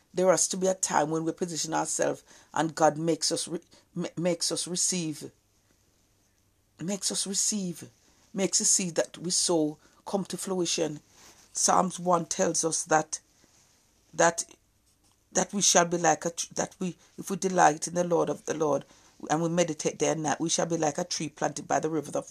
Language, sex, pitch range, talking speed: English, female, 130-175 Hz, 190 wpm